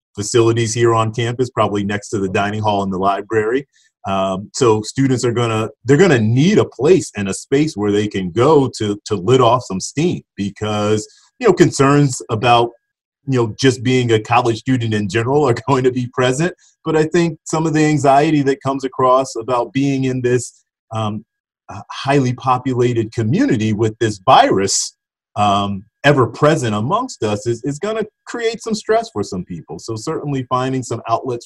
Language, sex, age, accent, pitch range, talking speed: English, male, 30-49, American, 110-140 Hz, 185 wpm